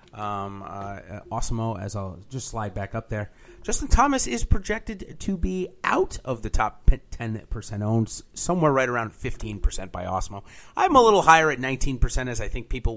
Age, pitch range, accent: 30-49, 105-135 Hz, American